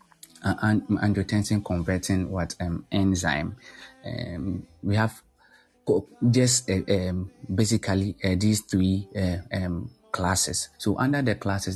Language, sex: Japanese, male